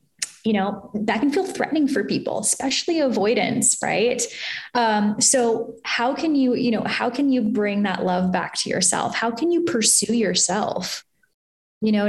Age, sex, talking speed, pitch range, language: 10-29, female, 170 wpm, 205-245 Hz, English